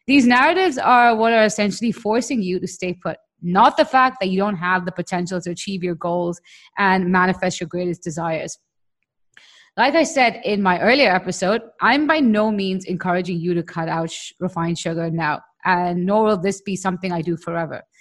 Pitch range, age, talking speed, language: 180-240 Hz, 20-39, 190 wpm, English